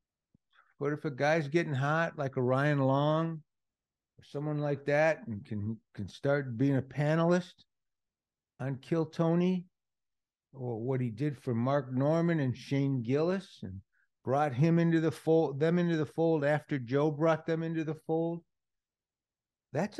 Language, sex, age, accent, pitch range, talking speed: English, male, 60-79, American, 120-165 Hz, 155 wpm